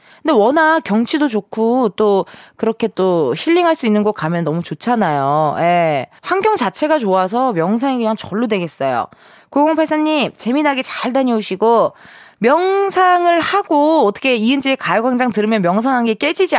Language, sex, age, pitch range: Korean, female, 20-39, 190-285 Hz